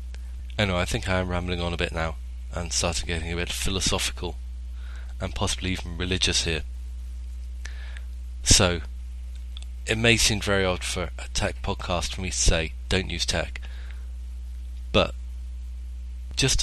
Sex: male